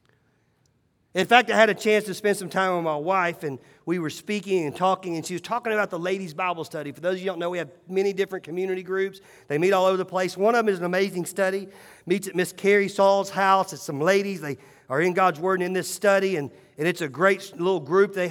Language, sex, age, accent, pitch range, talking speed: English, male, 40-59, American, 180-220 Hz, 260 wpm